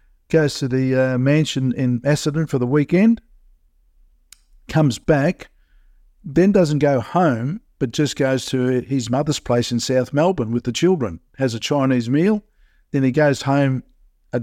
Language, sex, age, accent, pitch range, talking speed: English, male, 50-69, Australian, 125-150 Hz, 160 wpm